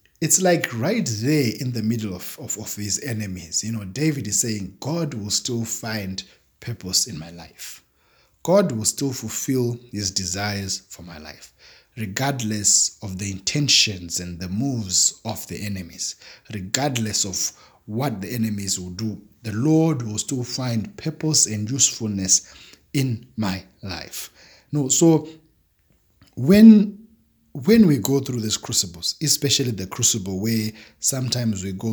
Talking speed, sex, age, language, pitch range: 145 wpm, male, 60-79, English, 95-125 Hz